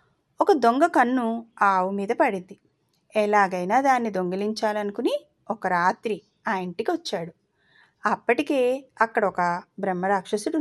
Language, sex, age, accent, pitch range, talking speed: Telugu, female, 30-49, native, 190-260 Hz, 95 wpm